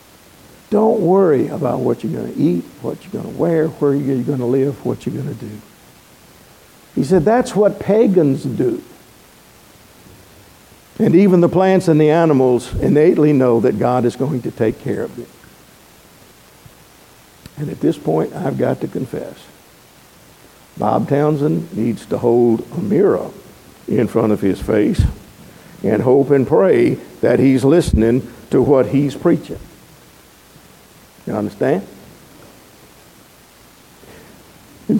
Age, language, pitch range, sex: 60-79, English, 135-190 Hz, male